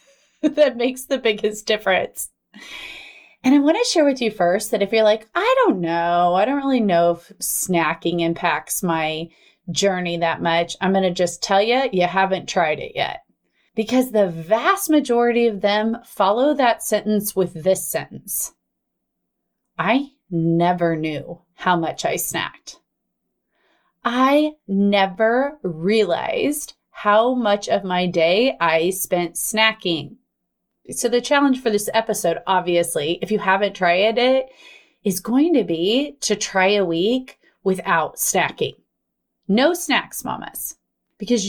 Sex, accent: female, American